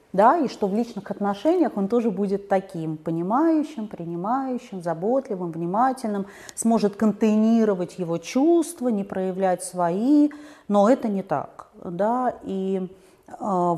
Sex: female